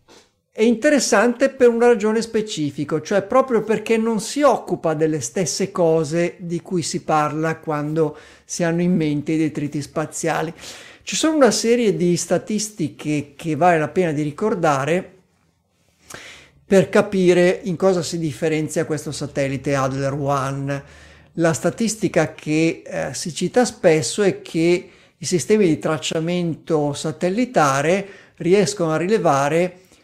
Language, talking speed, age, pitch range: Italian, 130 wpm, 50-69, 155-195 Hz